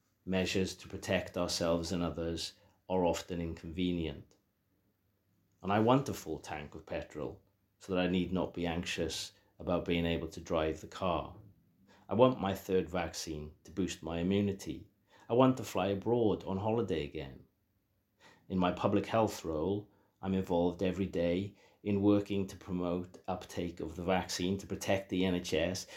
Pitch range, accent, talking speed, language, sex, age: 85-100 Hz, British, 160 wpm, English, male, 40-59